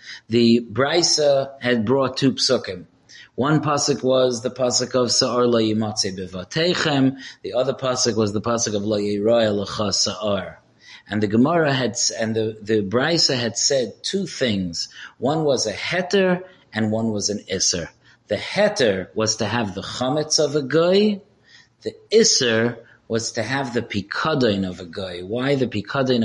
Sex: male